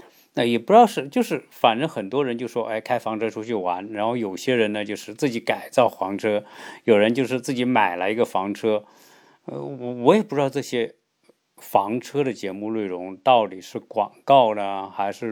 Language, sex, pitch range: Chinese, male, 100-145 Hz